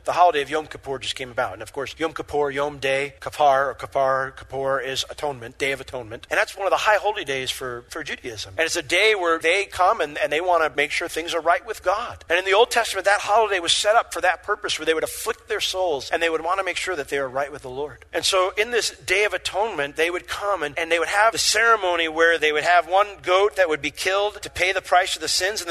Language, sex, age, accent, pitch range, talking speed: English, male, 40-59, American, 150-215 Hz, 285 wpm